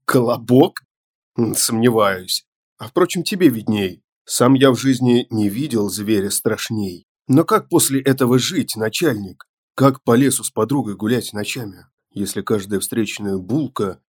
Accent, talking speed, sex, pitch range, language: native, 130 wpm, male, 100-130 Hz, Russian